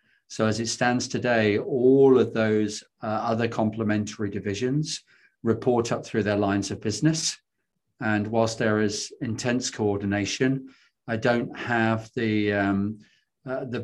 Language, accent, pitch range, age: English, British, 105-120 Hz, 40-59